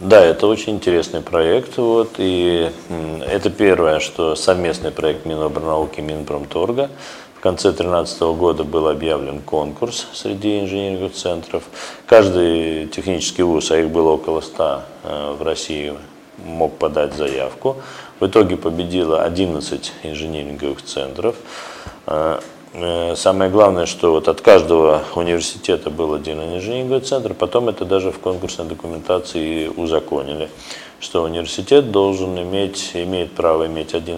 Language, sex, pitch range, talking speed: Russian, male, 80-95 Hz, 125 wpm